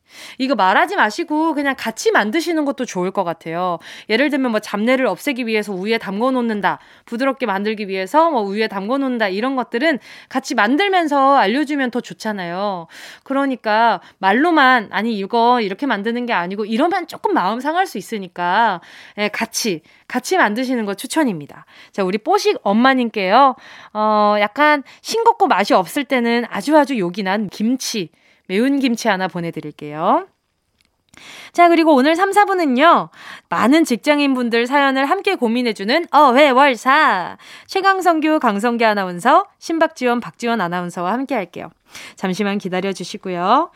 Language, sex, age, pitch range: Korean, female, 20-39, 200-285 Hz